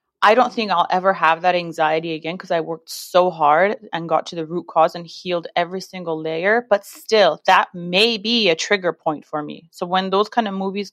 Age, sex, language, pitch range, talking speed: 30-49, female, English, 175-220 Hz, 225 wpm